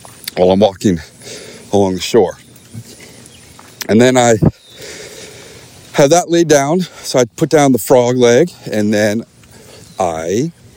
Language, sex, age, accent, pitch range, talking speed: English, male, 40-59, American, 110-145 Hz, 130 wpm